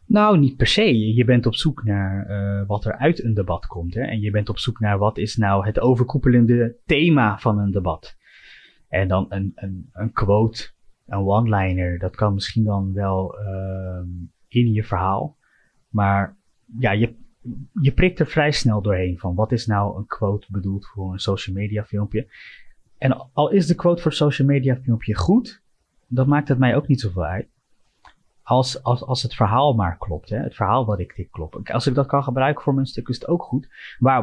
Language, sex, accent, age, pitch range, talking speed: Dutch, male, Dutch, 20-39, 100-135 Hz, 200 wpm